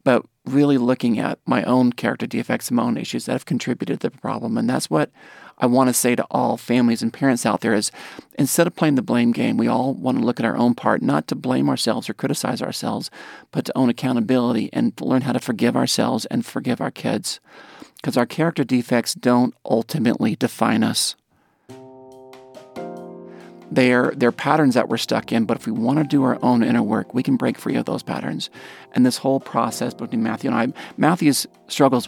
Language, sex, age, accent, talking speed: English, male, 40-59, American, 205 wpm